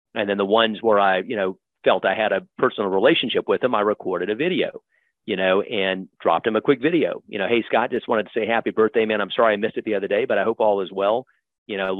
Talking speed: 275 wpm